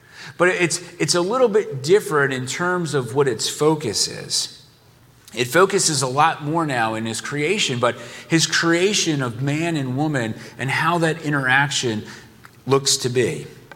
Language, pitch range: English, 130-165 Hz